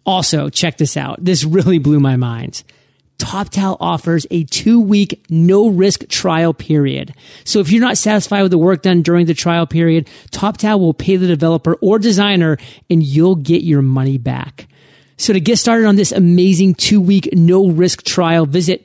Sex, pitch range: male, 160-195 Hz